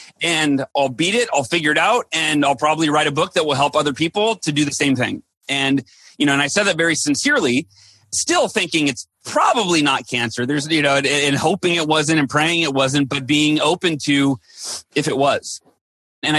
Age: 30-49